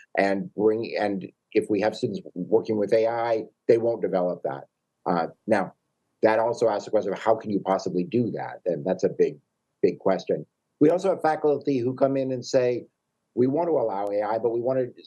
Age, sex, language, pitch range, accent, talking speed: 50-69, male, English, 105-145 Hz, American, 205 wpm